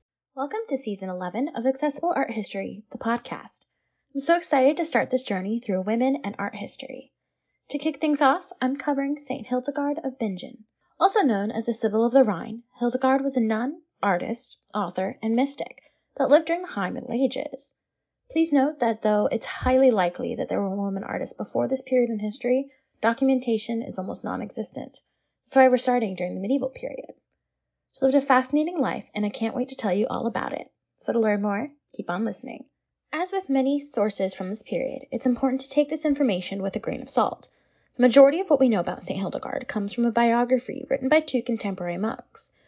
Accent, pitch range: American, 220-275 Hz